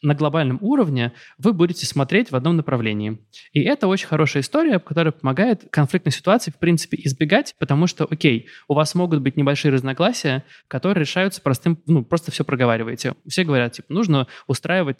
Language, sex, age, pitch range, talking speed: Russian, male, 20-39, 135-170 Hz, 170 wpm